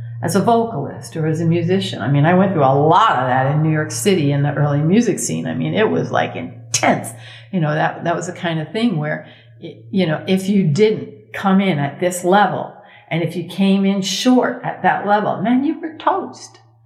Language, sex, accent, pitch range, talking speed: English, female, American, 150-195 Hz, 230 wpm